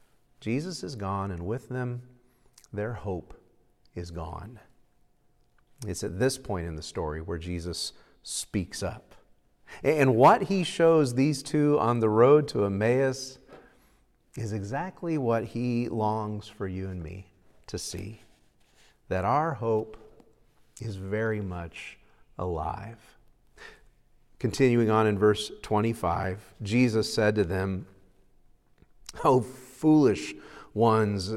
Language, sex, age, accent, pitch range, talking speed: English, male, 40-59, American, 100-145 Hz, 120 wpm